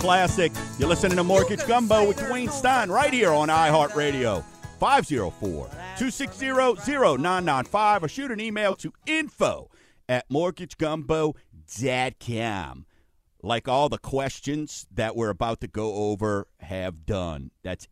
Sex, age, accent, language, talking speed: male, 50-69, American, English, 115 wpm